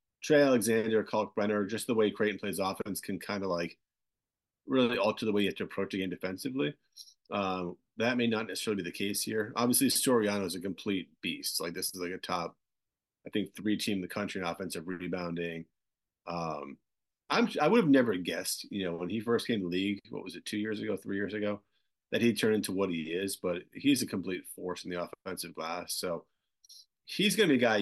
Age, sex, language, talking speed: 30-49, male, English, 225 wpm